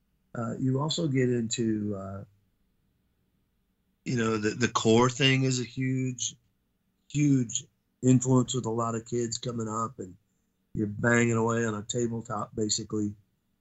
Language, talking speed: English, 140 wpm